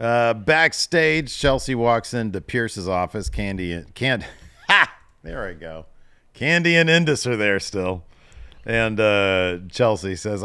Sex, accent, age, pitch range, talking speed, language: male, American, 40-59, 85-120 Hz, 105 wpm, English